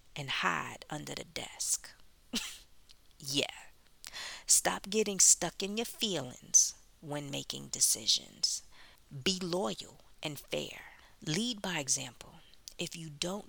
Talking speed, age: 110 wpm, 40-59